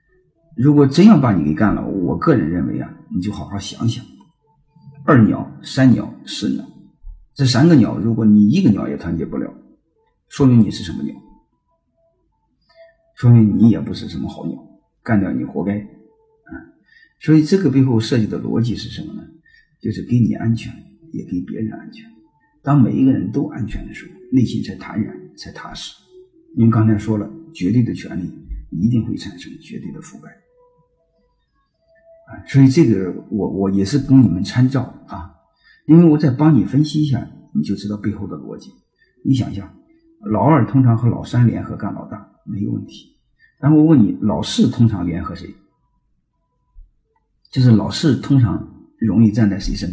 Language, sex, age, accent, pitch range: Chinese, male, 50-69, native, 105-165 Hz